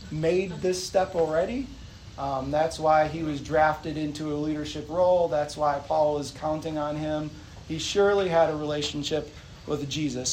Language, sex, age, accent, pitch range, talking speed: English, male, 30-49, American, 145-180 Hz, 165 wpm